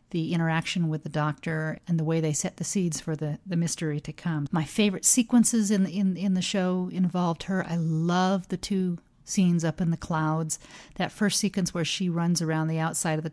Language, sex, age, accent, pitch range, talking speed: English, female, 40-59, American, 160-185 Hz, 210 wpm